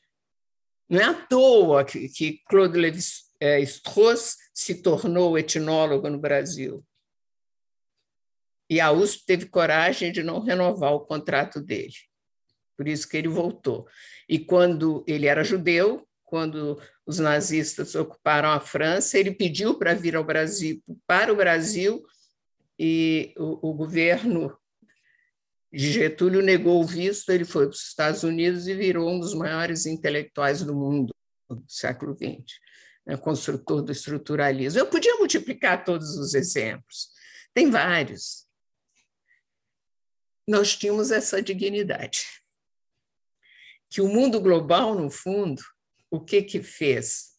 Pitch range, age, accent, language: 150-195 Hz, 60-79, Brazilian, Portuguese